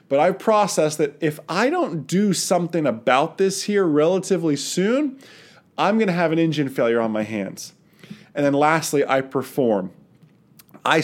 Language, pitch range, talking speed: English, 145-190 Hz, 165 wpm